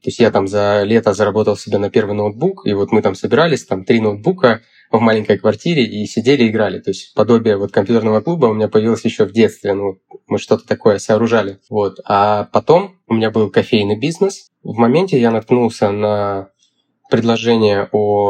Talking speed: 185 wpm